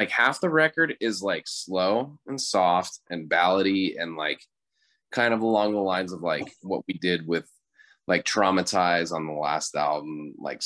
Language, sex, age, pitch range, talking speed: English, male, 20-39, 85-115 Hz, 175 wpm